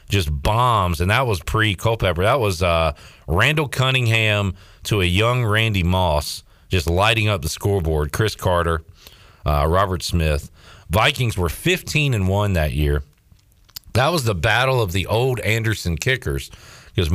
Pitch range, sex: 80-110 Hz, male